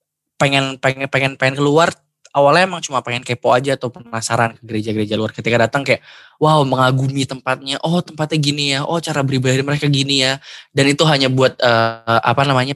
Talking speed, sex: 185 wpm, male